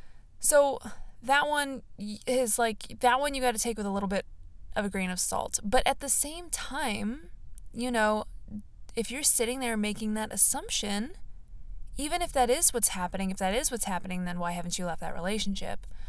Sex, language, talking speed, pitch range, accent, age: female, English, 195 wpm, 195-245 Hz, American, 20-39